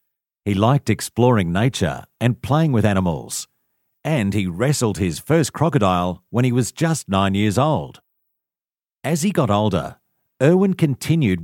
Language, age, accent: English, 50-69, Australian